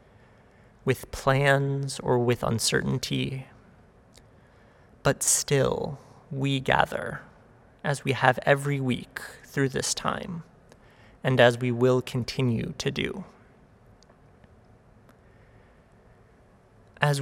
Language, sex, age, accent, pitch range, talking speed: English, male, 30-49, American, 120-135 Hz, 85 wpm